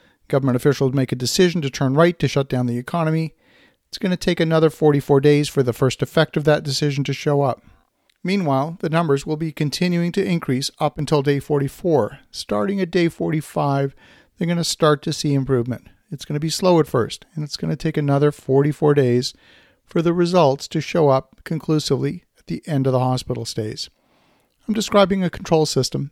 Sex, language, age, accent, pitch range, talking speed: male, English, 50-69, American, 130-165 Hz, 200 wpm